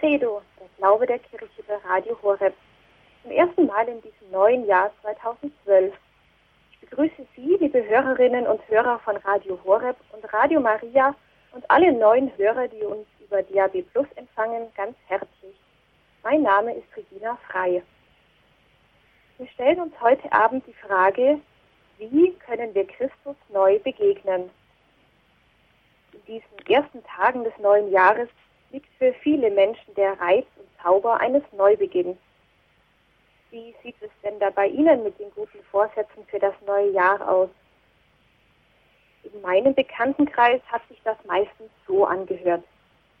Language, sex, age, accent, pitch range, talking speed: German, female, 30-49, German, 195-260 Hz, 140 wpm